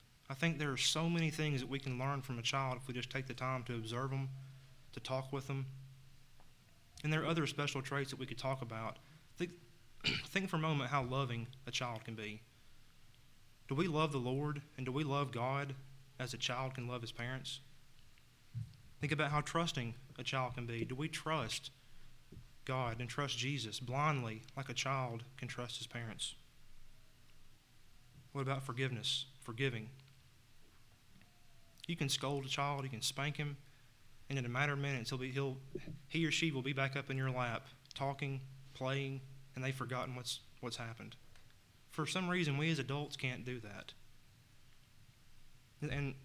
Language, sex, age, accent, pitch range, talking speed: English, male, 30-49, American, 120-140 Hz, 180 wpm